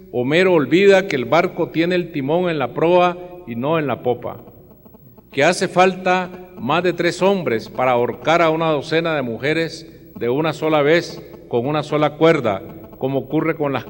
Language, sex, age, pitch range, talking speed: Spanish, male, 50-69, 125-165 Hz, 180 wpm